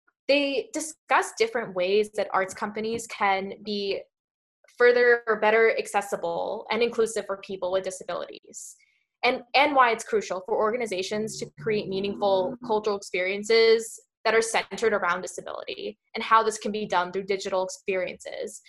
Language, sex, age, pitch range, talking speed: English, female, 10-29, 195-245 Hz, 145 wpm